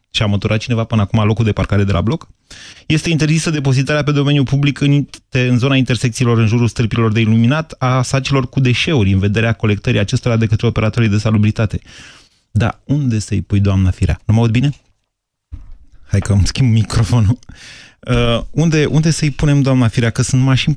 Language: Romanian